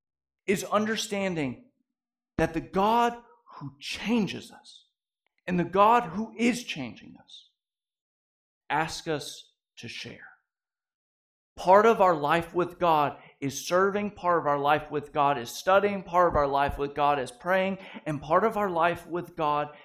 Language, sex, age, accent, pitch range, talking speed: English, male, 40-59, American, 145-195 Hz, 150 wpm